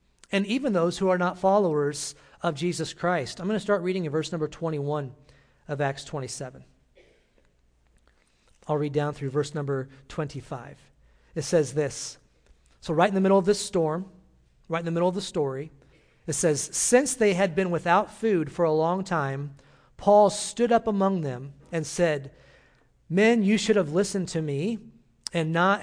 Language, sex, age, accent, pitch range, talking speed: English, male, 40-59, American, 145-190 Hz, 175 wpm